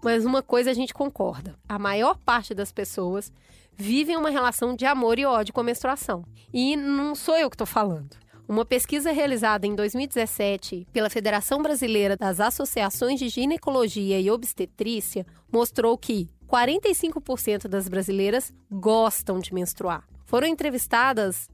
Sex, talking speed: female, 145 wpm